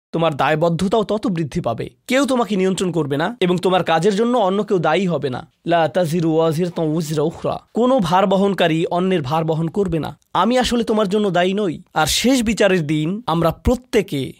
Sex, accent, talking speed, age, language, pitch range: male, native, 160 wpm, 20-39, Bengali, 170-225 Hz